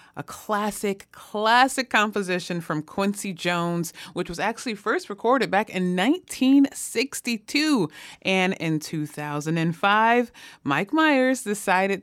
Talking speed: 105 wpm